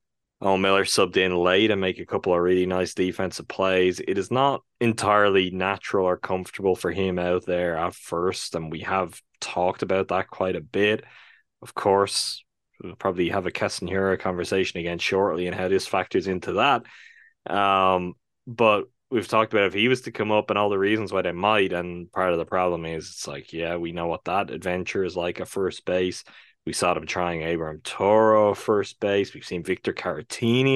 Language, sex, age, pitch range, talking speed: English, male, 10-29, 90-105 Hz, 200 wpm